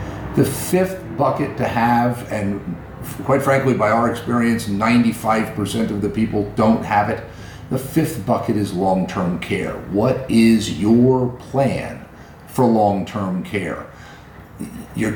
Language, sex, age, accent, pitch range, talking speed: English, male, 50-69, American, 105-125 Hz, 125 wpm